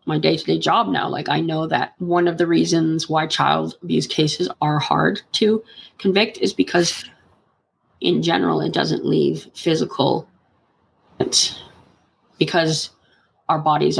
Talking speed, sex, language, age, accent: 135 wpm, female, English, 20-39, American